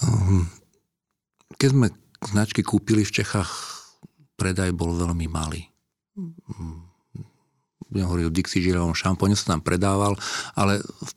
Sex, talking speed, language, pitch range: male, 115 wpm, Slovak, 85-105 Hz